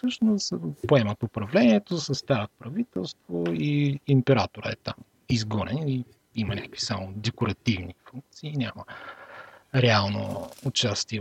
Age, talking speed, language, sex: 40-59, 100 wpm, Bulgarian, male